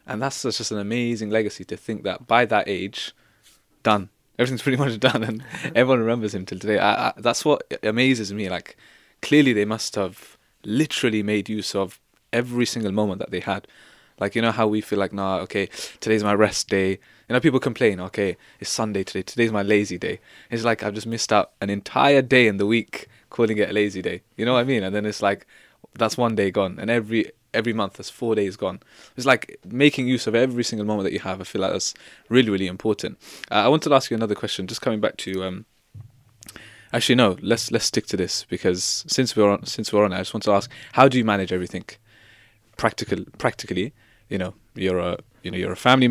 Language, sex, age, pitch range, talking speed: English, male, 20-39, 100-120 Hz, 225 wpm